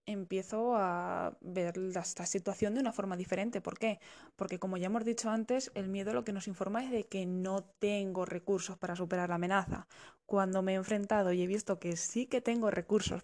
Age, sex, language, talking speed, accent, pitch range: 10-29, female, Spanish, 205 wpm, Spanish, 190-230 Hz